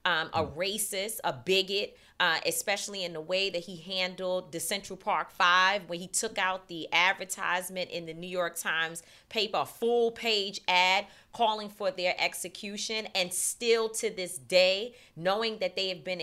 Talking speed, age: 170 wpm, 30-49